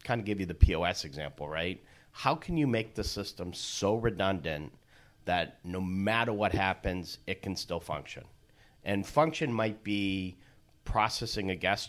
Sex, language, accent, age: male, English, American, 40-59